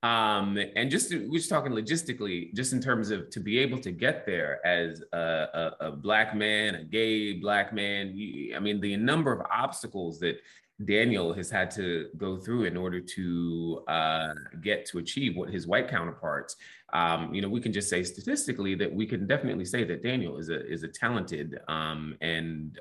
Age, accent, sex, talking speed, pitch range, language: 30-49, American, male, 195 wpm, 90-125 Hz, English